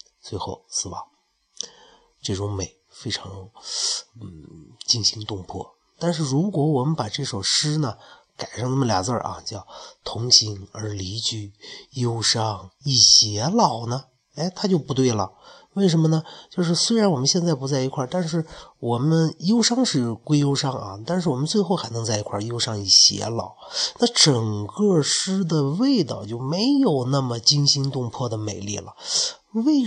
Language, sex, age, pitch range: Chinese, male, 30-49, 110-150 Hz